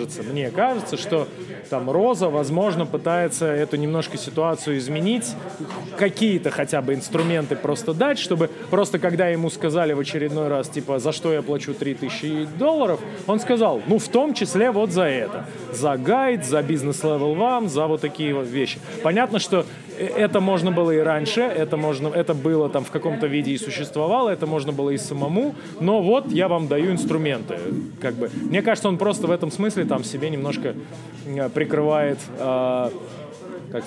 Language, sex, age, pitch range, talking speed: Russian, male, 30-49, 140-180 Hz, 160 wpm